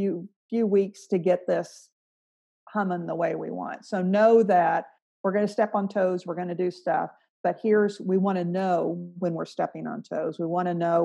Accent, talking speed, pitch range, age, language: American, 210 wpm, 170-200 Hz, 50-69, English